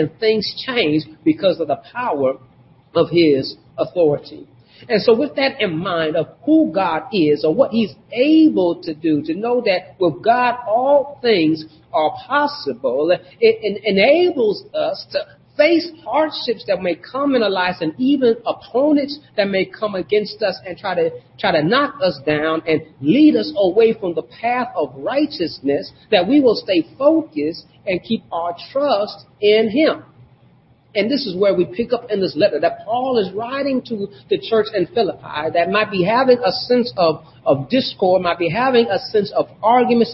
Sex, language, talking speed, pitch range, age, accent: male, English, 175 wpm, 165-255 Hz, 40-59, American